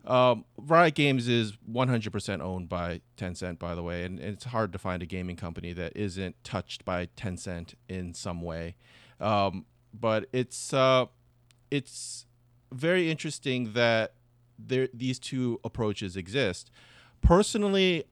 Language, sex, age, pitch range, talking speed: English, male, 30-49, 105-130 Hz, 140 wpm